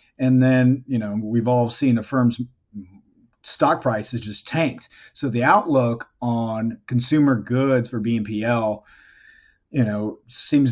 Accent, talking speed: American, 135 wpm